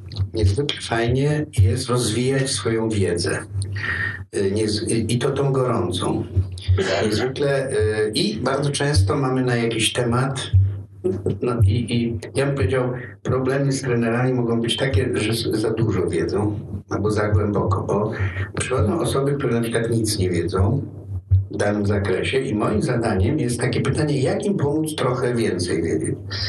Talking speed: 135 wpm